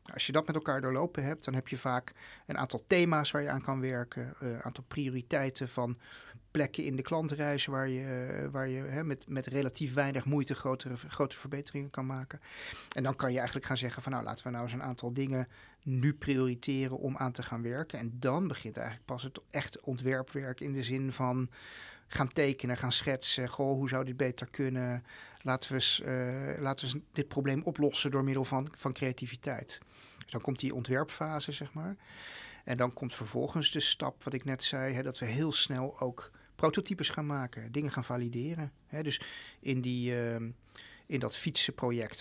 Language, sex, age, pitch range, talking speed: Dutch, male, 40-59, 125-145 Hz, 185 wpm